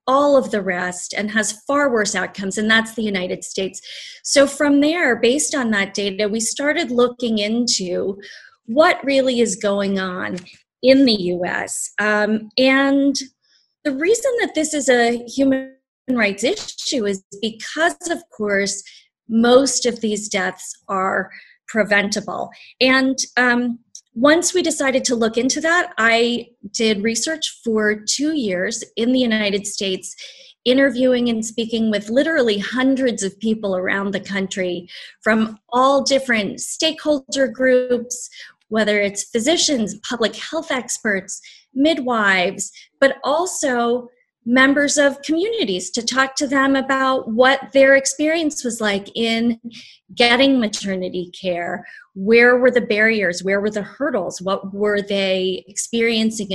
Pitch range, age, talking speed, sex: 205-270 Hz, 30-49, 135 wpm, female